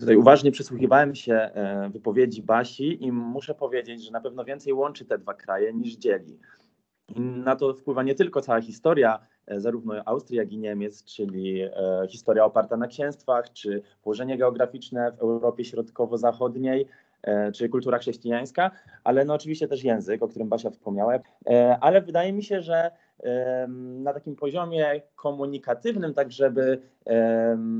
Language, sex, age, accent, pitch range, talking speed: Polish, male, 20-39, native, 120-150 Hz, 140 wpm